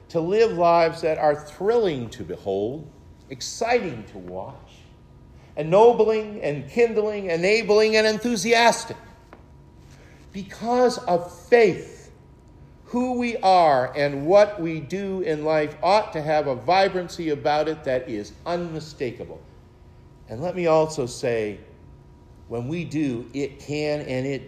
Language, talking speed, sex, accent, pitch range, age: English, 125 wpm, male, American, 120-175 Hz, 50-69